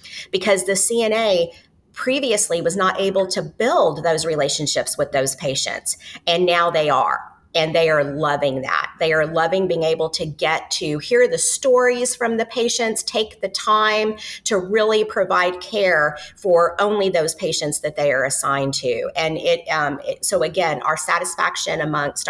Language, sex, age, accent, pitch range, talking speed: English, female, 40-59, American, 160-215 Hz, 165 wpm